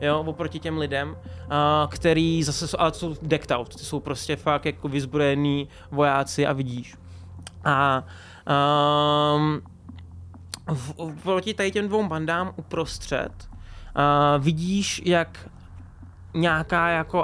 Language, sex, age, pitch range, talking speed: Czech, male, 20-39, 140-170 Hz, 115 wpm